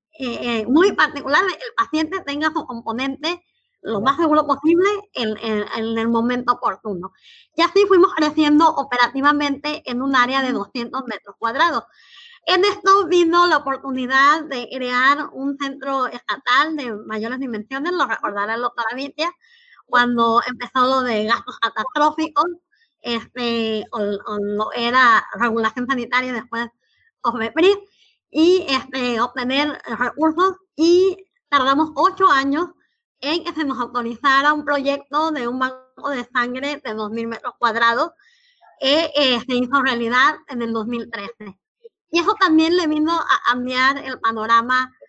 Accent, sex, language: American, male, Spanish